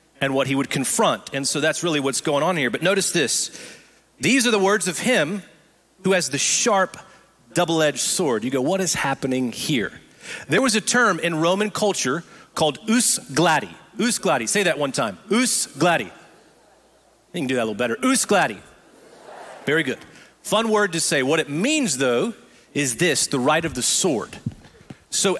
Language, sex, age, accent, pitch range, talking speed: English, male, 40-59, American, 145-195 Hz, 185 wpm